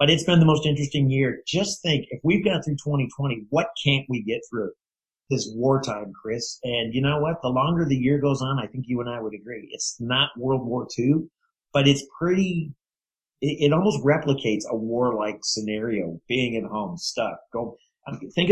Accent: American